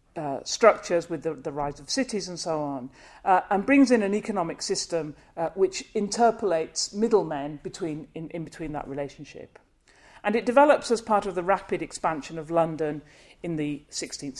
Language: English